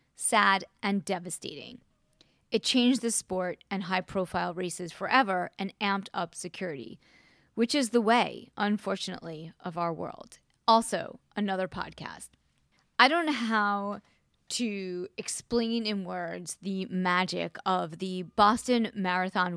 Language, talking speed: English, 125 wpm